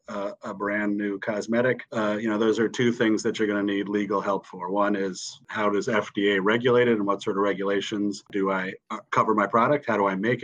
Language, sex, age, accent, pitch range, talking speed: English, male, 30-49, American, 100-120 Hz, 235 wpm